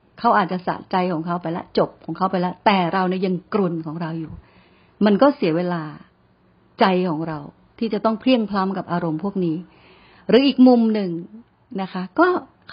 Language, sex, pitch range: Thai, female, 175-235 Hz